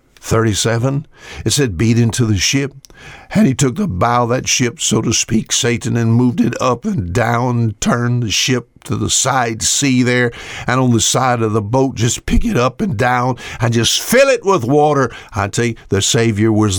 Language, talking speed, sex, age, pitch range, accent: English, 205 wpm, male, 60-79, 100-130 Hz, American